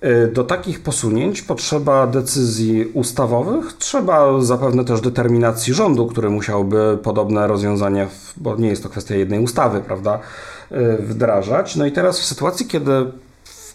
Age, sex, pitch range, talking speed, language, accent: 40-59, male, 105-125 Hz, 135 wpm, Polish, native